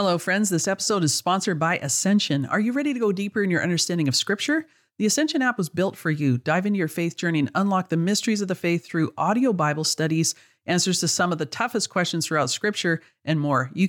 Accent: American